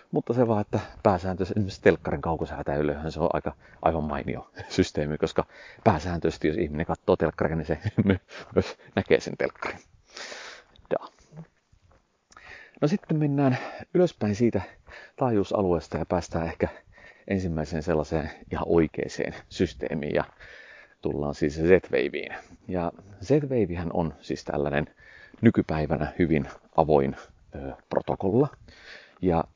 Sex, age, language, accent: male, 40-59, Finnish, native